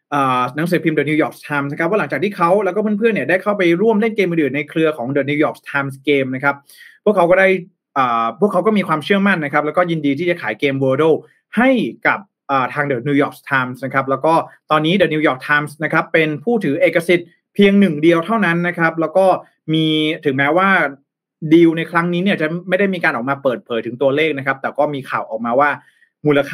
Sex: male